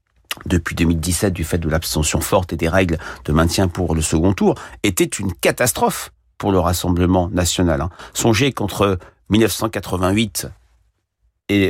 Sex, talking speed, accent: male, 140 wpm, French